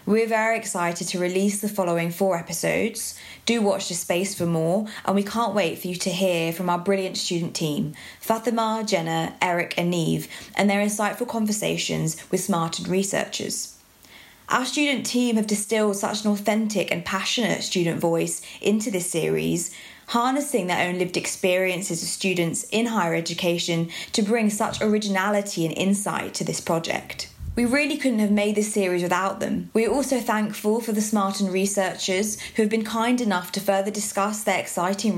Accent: British